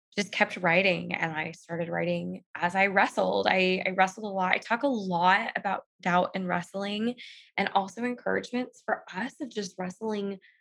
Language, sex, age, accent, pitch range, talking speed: English, female, 20-39, American, 175-205 Hz, 175 wpm